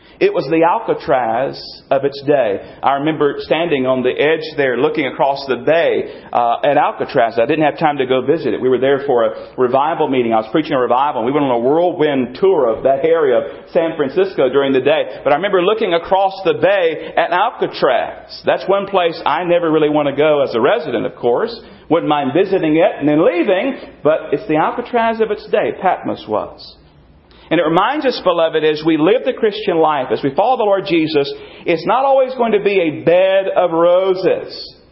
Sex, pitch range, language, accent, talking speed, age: male, 165-275 Hz, English, American, 210 wpm, 40-59